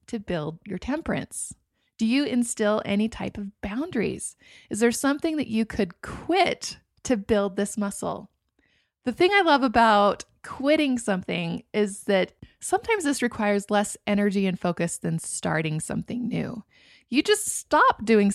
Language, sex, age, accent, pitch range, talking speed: English, female, 20-39, American, 200-255 Hz, 150 wpm